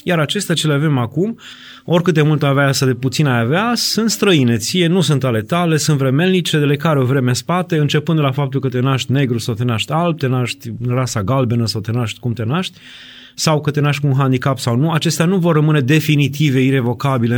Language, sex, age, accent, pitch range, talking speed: Romanian, male, 30-49, native, 125-160 Hz, 230 wpm